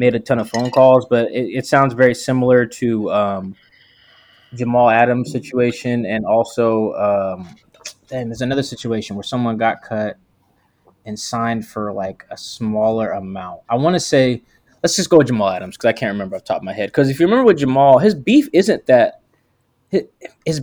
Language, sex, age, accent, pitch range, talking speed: English, male, 20-39, American, 110-130 Hz, 190 wpm